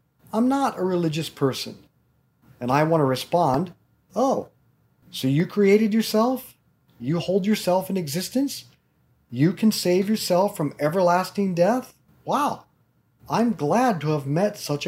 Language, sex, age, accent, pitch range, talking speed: English, male, 40-59, American, 135-195 Hz, 135 wpm